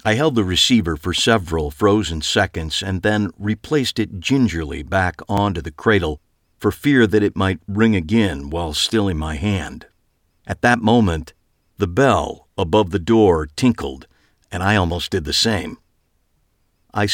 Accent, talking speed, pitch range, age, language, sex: American, 160 wpm, 85-110 Hz, 50-69, English, male